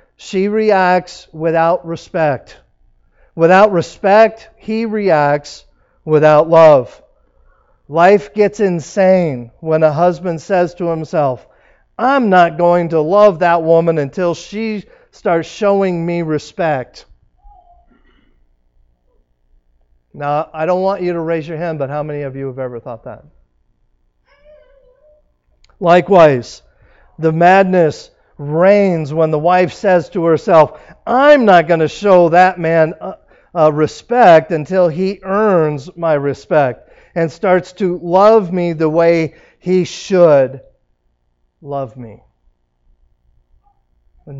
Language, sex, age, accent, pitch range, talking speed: English, male, 50-69, American, 125-180 Hz, 120 wpm